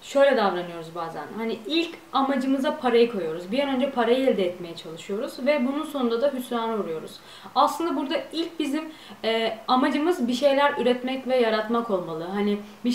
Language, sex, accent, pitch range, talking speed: Turkish, female, native, 210-275 Hz, 160 wpm